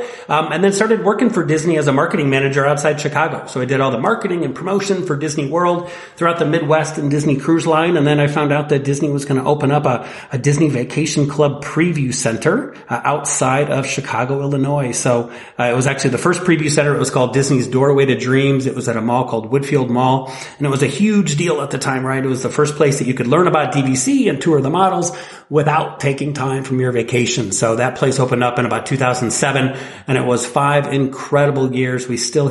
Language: English